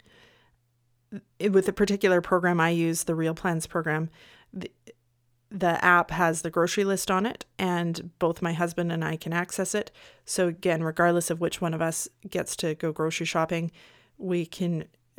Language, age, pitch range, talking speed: English, 30-49, 160-185 Hz, 170 wpm